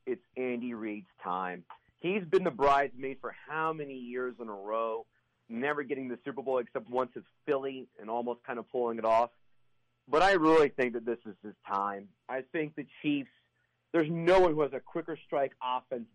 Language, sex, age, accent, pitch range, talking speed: English, male, 40-59, American, 120-150 Hz, 195 wpm